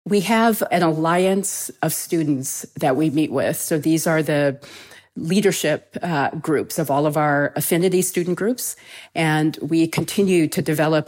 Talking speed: 155 wpm